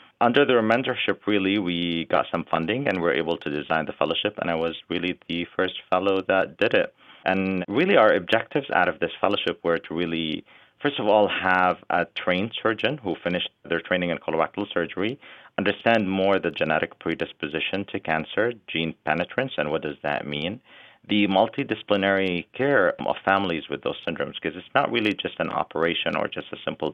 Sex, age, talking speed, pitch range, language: male, 40-59, 185 wpm, 85-100 Hz, English